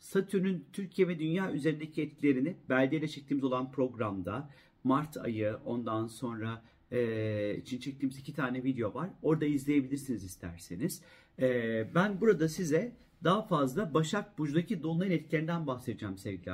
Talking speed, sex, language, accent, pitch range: 130 wpm, male, Turkish, native, 125-170 Hz